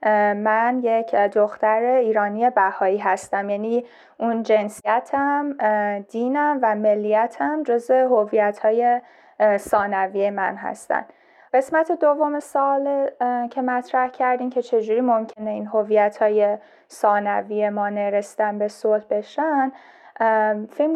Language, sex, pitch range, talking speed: Persian, female, 210-260 Hz, 100 wpm